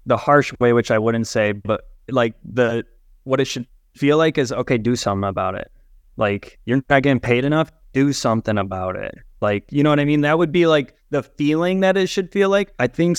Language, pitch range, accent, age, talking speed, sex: English, 115-155 Hz, American, 20-39, 230 wpm, male